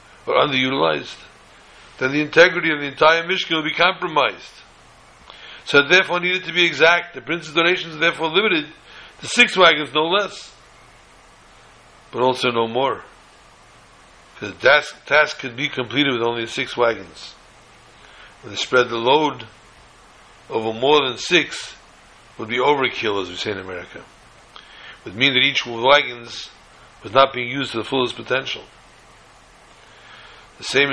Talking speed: 155 wpm